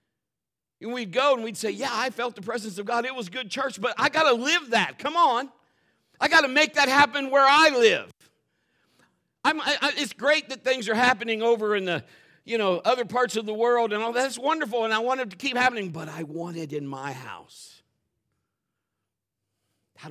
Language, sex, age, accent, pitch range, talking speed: English, male, 50-69, American, 140-230 Hz, 210 wpm